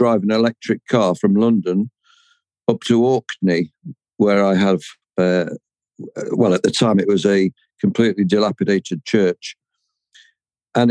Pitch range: 100-125 Hz